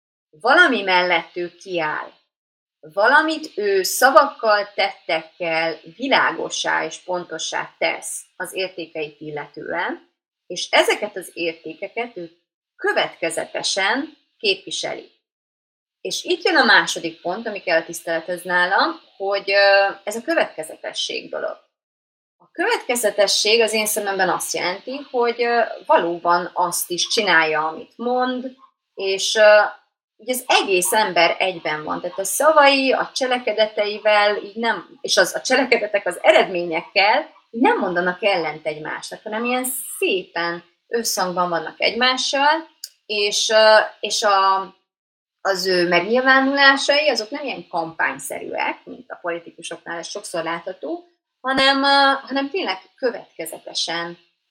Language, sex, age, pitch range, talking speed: Hungarian, female, 30-49, 175-255 Hz, 110 wpm